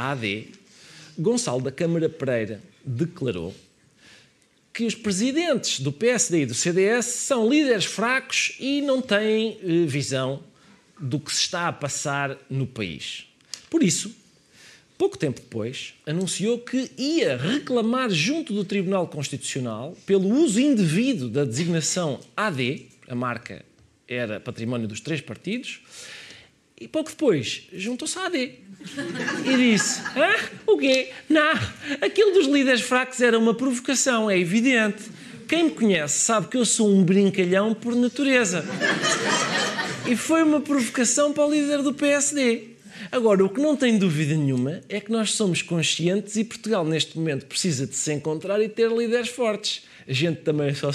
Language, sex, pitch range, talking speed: Portuguese, male, 155-245 Hz, 145 wpm